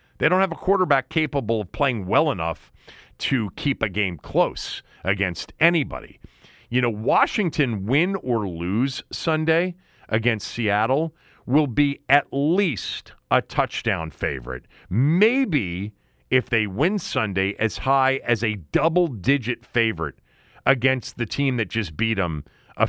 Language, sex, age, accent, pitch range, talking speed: English, male, 40-59, American, 95-140 Hz, 135 wpm